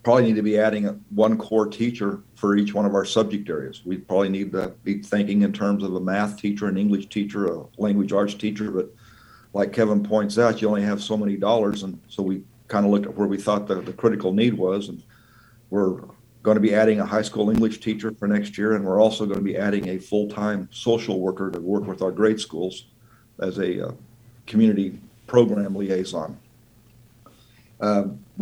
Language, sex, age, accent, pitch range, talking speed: English, male, 50-69, American, 100-115 Hz, 205 wpm